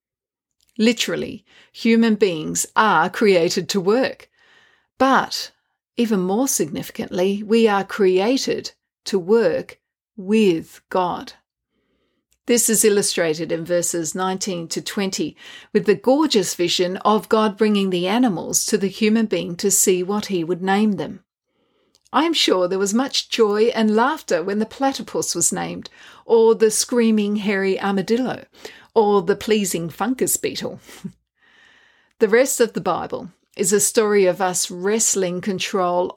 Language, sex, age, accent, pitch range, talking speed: English, female, 40-59, Australian, 185-225 Hz, 135 wpm